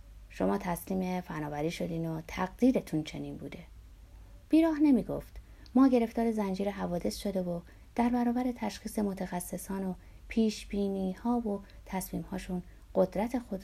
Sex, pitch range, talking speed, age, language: female, 165-220 Hz, 125 wpm, 30-49, Persian